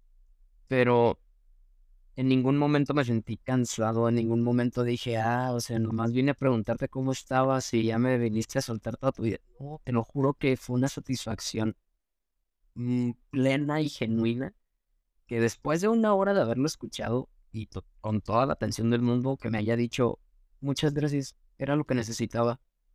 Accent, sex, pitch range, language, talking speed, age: Mexican, male, 110-130 Hz, Spanish, 165 wpm, 20-39